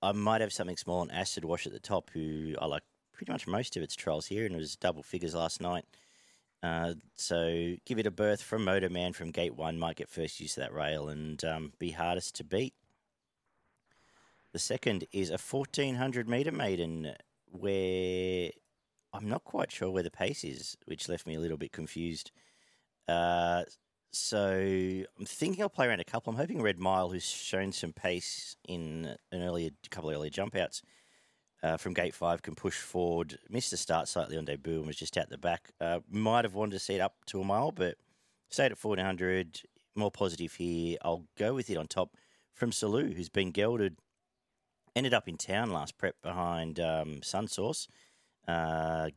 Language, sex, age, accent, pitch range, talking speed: English, male, 40-59, Australian, 80-95 Hz, 195 wpm